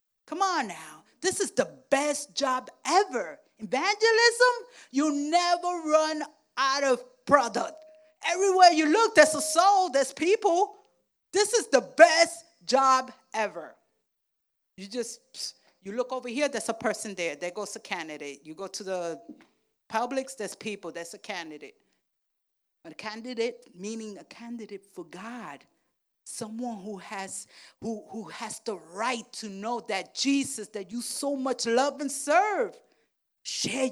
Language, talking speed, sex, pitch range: Spanish, 145 wpm, female, 210-290 Hz